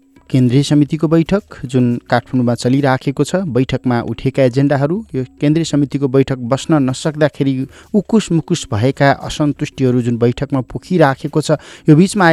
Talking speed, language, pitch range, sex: 170 wpm, English, 130-155 Hz, male